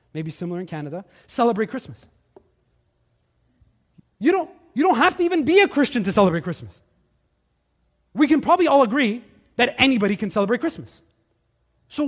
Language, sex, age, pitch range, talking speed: English, male, 30-49, 170-285 Hz, 150 wpm